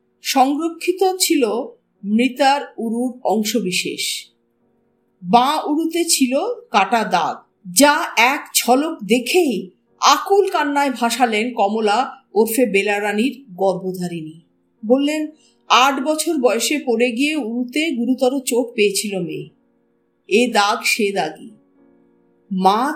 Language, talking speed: Bengali, 90 wpm